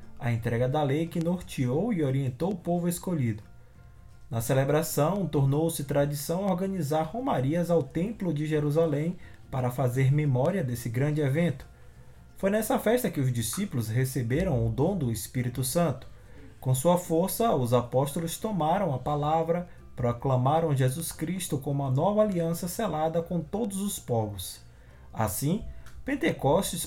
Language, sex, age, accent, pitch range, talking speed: Portuguese, male, 20-39, Brazilian, 125-175 Hz, 135 wpm